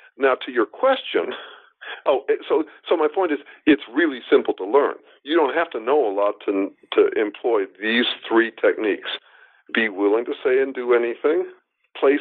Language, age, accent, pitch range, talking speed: English, 50-69, American, 295-440 Hz, 175 wpm